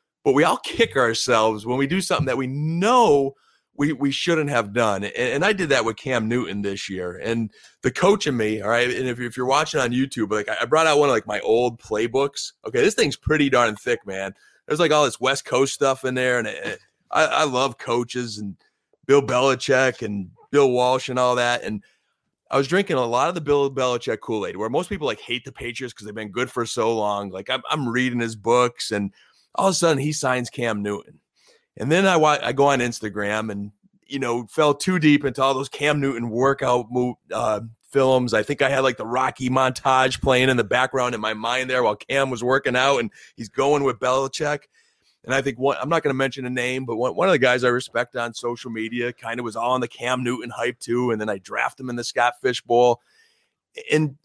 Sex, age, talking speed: male, 30-49, 235 wpm